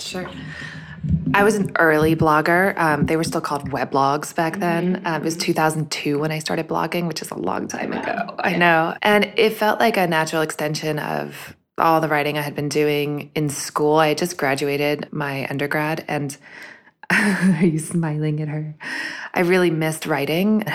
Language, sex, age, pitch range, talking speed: English, female, 20-39, 140-160 Hz, 185 wpm